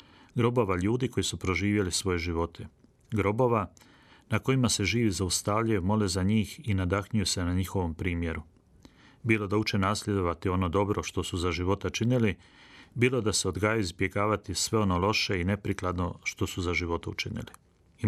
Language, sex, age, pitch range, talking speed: Croatian, male, 40-59, 90-110 Hz, 165 wpm